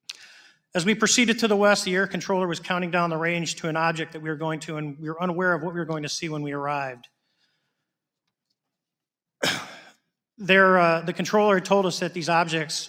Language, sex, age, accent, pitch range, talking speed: English, male, 40-59, American, 155-180 Hz, 210 wpm